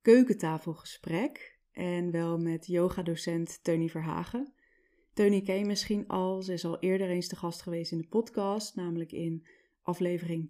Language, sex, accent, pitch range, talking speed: Dutch, female, Dutch, 175-210 Hz, 150 wpm